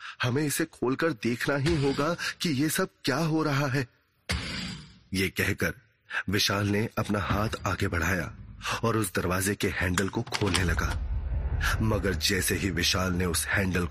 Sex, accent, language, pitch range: male, native, Hindi, 90-110 Hz